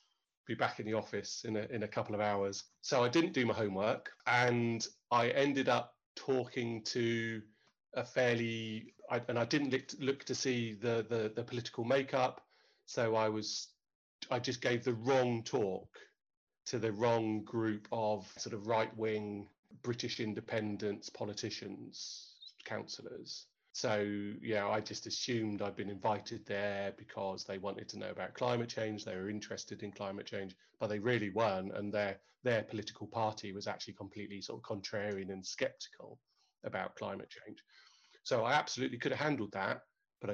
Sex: male